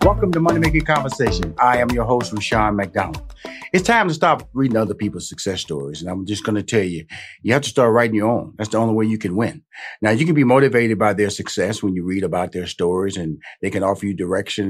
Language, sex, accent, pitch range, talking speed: English, male, American, 100-120 Hz, 250 wpm